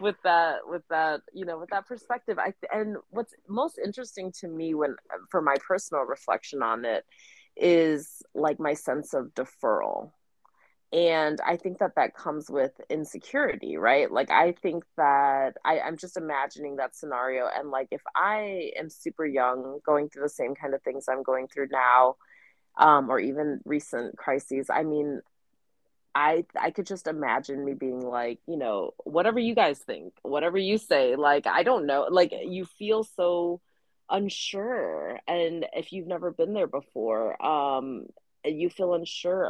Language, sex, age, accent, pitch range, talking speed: English, female, 30-49, American, 145-195 Hz, 170 wpm